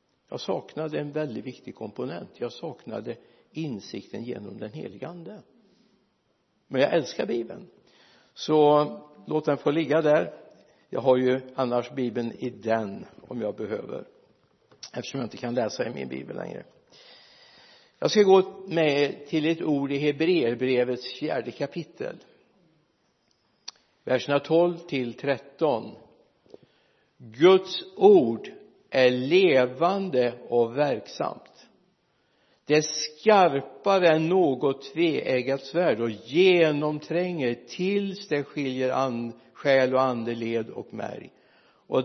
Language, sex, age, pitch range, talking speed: Swedish, male, 60-79, 125-170 Hz, 115 wpm